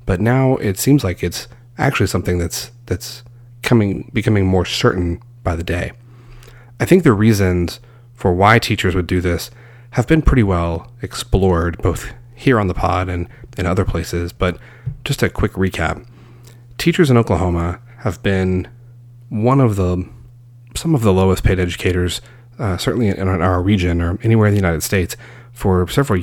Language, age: English, 30-49